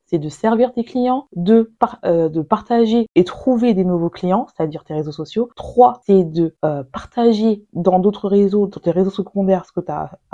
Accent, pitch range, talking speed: French, 175-225 Hz, 205 wpm